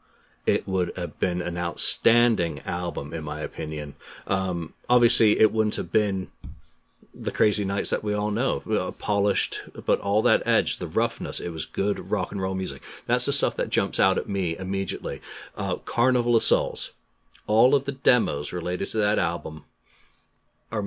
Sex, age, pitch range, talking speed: male, 40-59, 85-105 Hz, 175 wpm